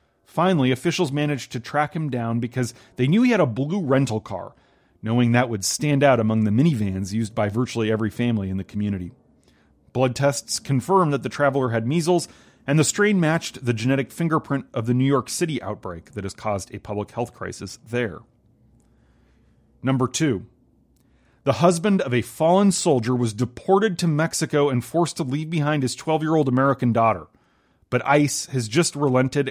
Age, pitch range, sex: 30-49, 115-155 Hz, male